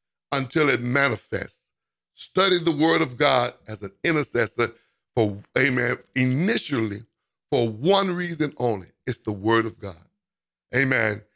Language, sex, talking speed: English, male, 125 wpm